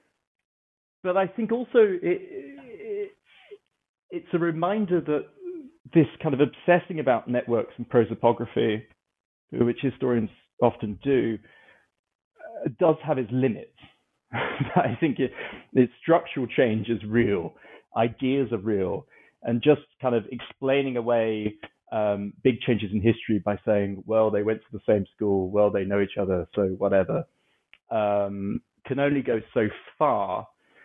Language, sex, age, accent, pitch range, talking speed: English, male, 30-49, British, 105-150 Hz, 130 wpm